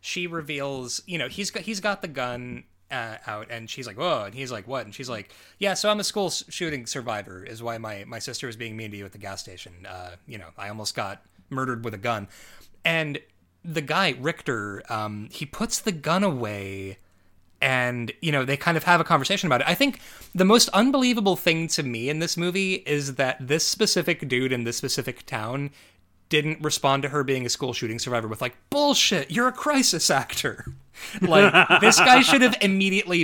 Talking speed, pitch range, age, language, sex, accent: 215 wpm, 120-195 Hz, 30-49, English, male, American